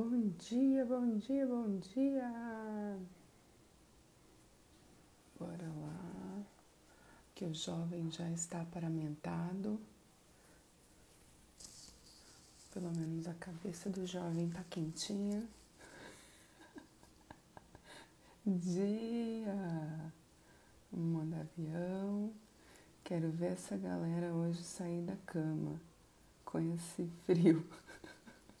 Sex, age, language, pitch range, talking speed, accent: female, 30-49, Portuguese, 165-195 Hz, 80 wpm, Brazilian